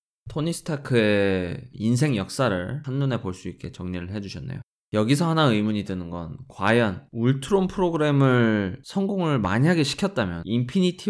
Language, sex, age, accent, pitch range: Korean, male, 20-39, native, 100-145 Hz